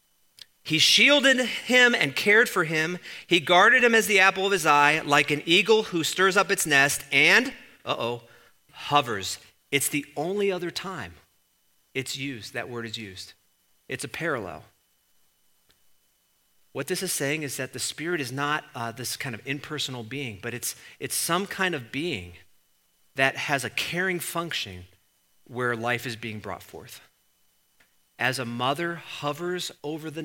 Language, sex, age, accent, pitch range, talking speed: English, male, 40-59, American, 115-165 Hz, 165 wpm